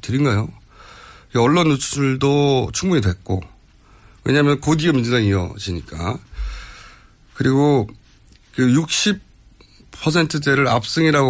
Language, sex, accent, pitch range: Korean, male, native, 105-160 Hz